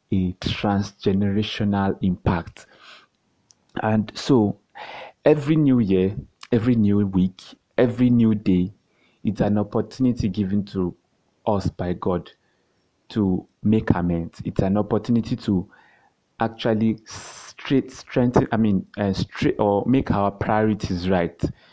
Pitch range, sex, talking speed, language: 100-125 Hz, male, 115 wpm, English